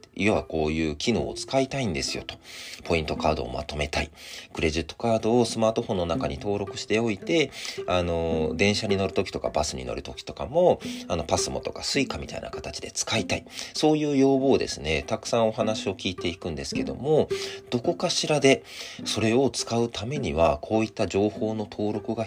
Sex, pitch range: male, 85-125 Hz